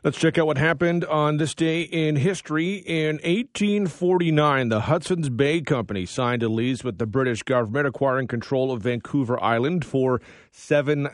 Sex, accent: male, American